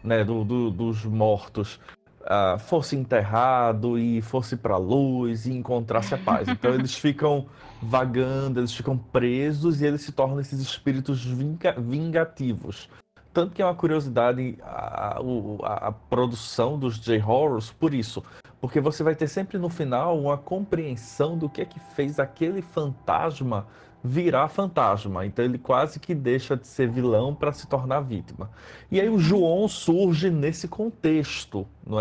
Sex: male